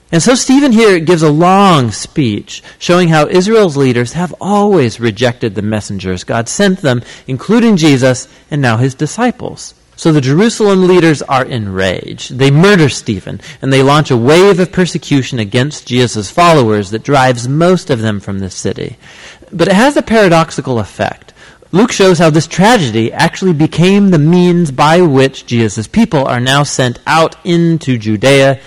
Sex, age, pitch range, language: male, 40-59, 125-175 Hz, English